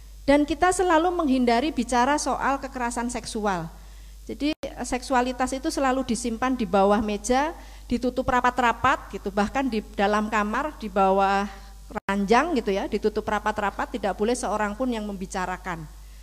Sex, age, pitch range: female, 50-69, 215-280 Hz